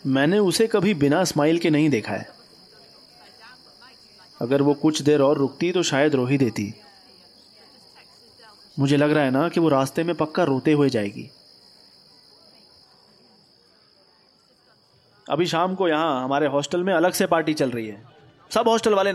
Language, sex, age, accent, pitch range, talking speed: Hindi, male, 30-49, native, 140-210 Hz, 155 wpm